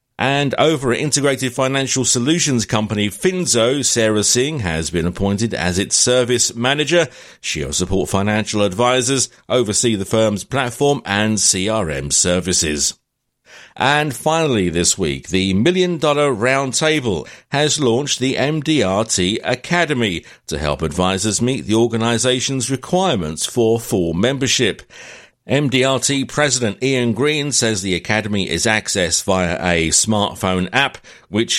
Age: 50-69